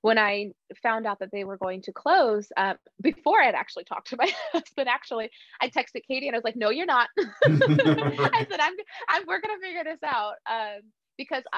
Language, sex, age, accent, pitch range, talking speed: English, female, 20-39, American, 195-240 Hz, 200 wpm